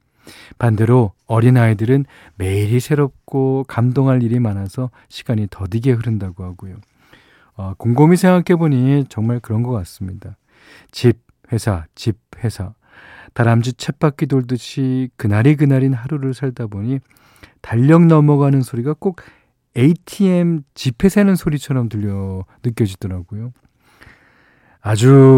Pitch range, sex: 110-140 Hz, male